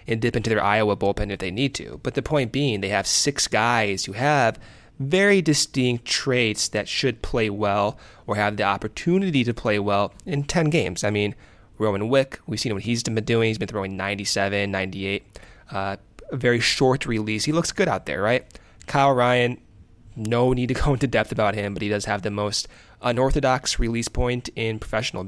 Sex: male